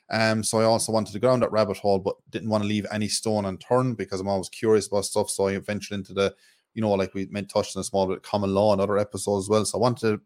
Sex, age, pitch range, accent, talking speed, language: male, 20-39, 95-105 Hz, Irish, 295 wpm, English